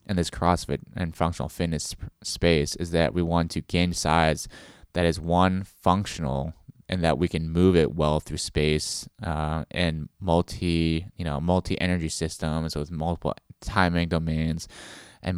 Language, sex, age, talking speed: English, male, 20-39, 155 wpm